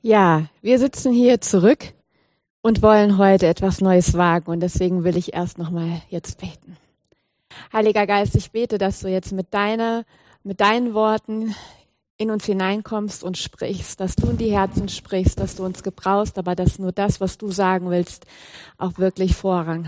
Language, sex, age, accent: German, female, 30-49, German